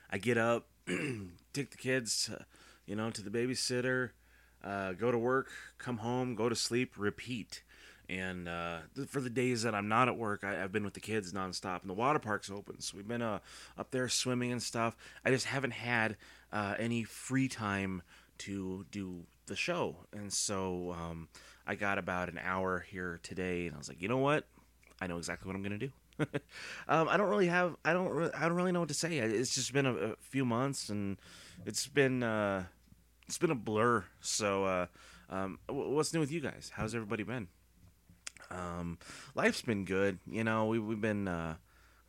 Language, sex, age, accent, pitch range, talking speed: English, male, 30-49, American, 95-125 Hz, 200 wpm